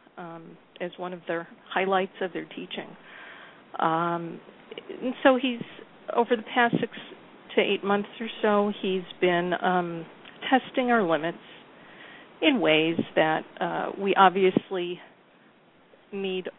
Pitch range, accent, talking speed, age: 170-200 Hz, American, 125 wpm, 50-69